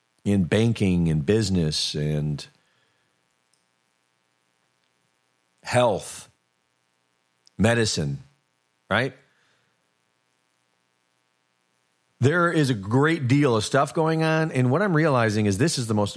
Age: 40-59